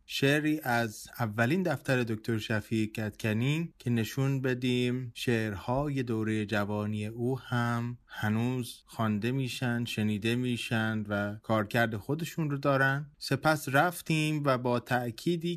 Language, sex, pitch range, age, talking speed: Persian, male, 110-140 Hz, 20-39, 115 wpm